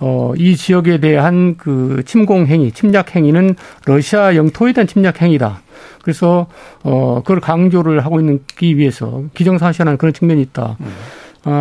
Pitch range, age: 145-185 Hz, 50-69